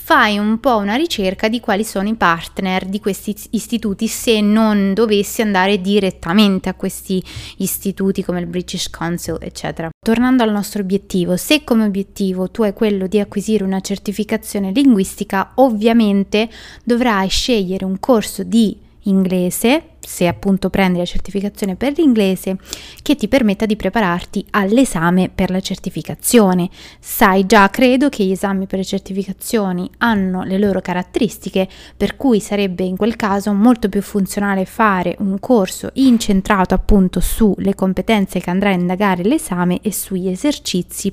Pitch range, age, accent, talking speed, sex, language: 190-220 Hz, 20-39, native, 145 wpm, female, Italian